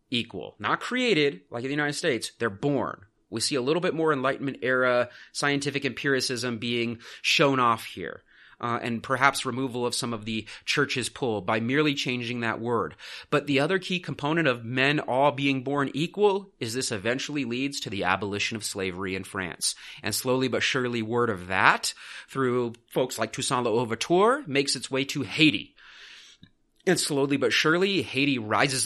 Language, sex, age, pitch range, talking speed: English, male, 30-49, 120-145 Hz, 175 wpm